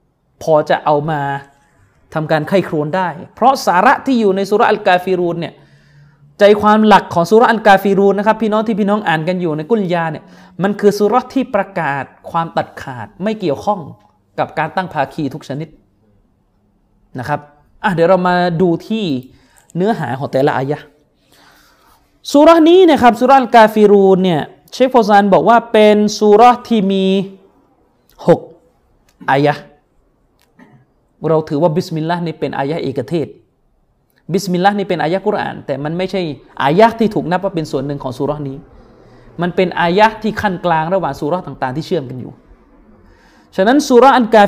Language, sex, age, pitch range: Thai, male, 20-39, 155-215 Hz